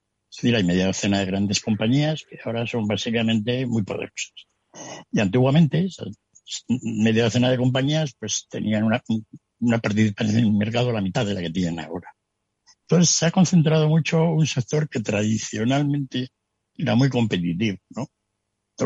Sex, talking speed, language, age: male, 160 wpm, Spanish, 60-79